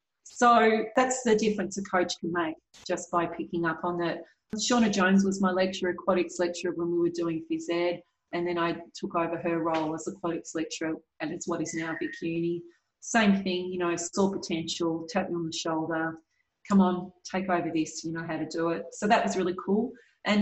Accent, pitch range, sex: Australian, 165-190 Hz, female